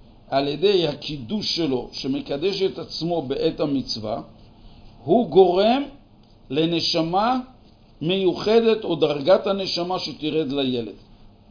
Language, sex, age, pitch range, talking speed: Hebrew, male, 50-69, 125-185 Hz, 95 wpm